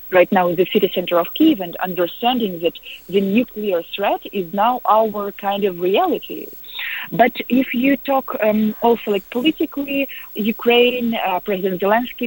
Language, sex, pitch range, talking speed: English, female, 180-245 Hz, 155 wpm